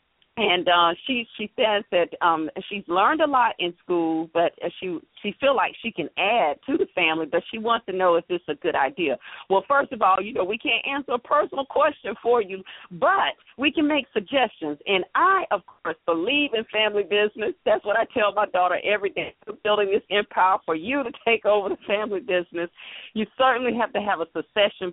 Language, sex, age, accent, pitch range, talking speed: English, female, 40-59, American, 170-225 Hz, 210 wpm